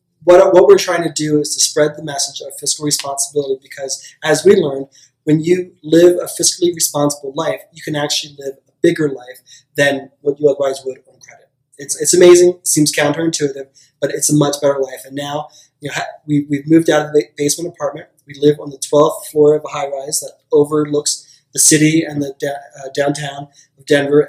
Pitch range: 140-165 Hz